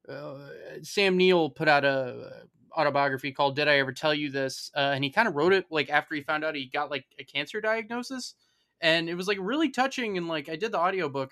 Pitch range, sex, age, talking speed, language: 135-155 Hz, male, 20-39, 240 wpm, English